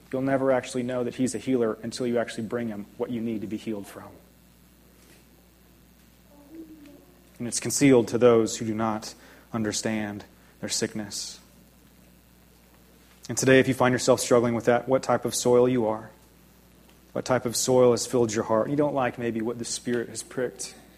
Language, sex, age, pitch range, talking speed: English, male, 30-49, 105-135 Hz, 180 wpm